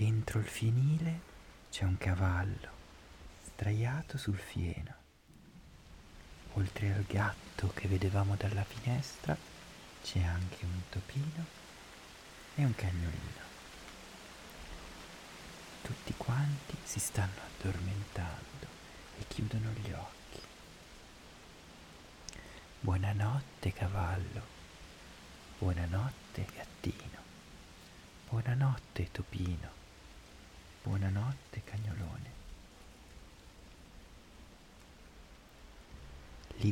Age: 40-59